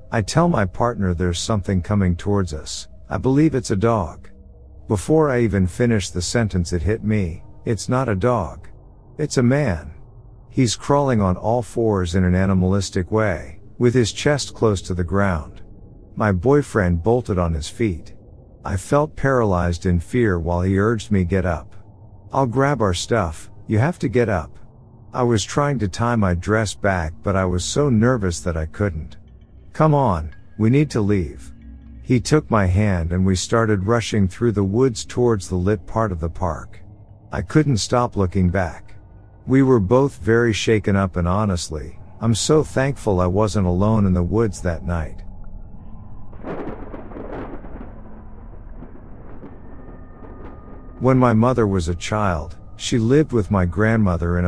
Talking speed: 165 wpm